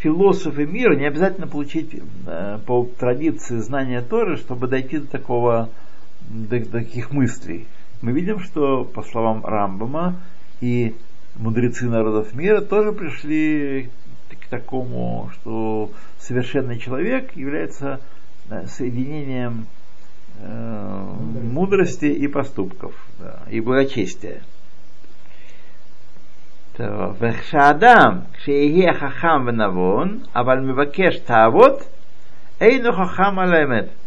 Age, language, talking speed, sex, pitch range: 60-79, Russian, 75 wpm, male, 115-160 Hz